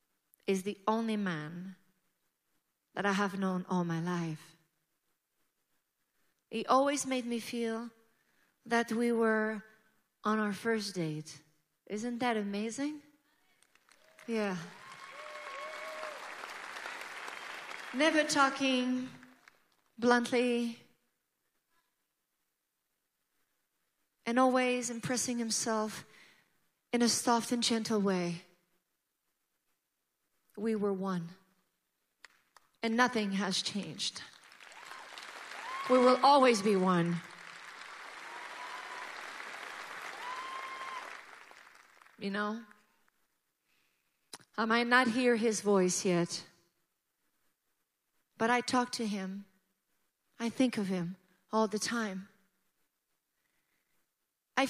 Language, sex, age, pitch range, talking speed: English, female, 30-49, 190-245 Hz, 80 wpm